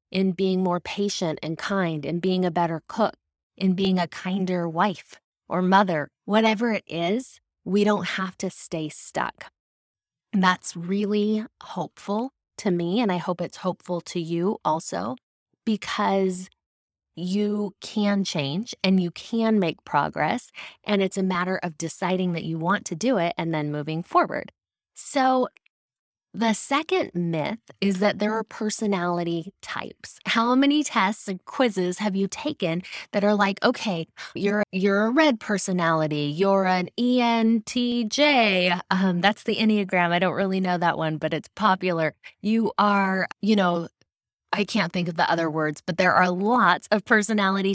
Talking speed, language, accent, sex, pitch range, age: 160 wpm, English, American, female, 175-215 Hz, 20-39